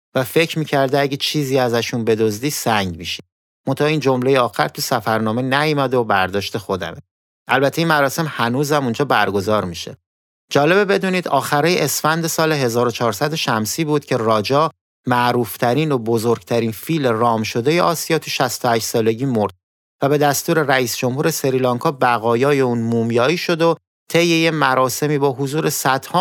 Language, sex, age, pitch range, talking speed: Persian, male, 30-49, 110-145 Hz, 145 wpm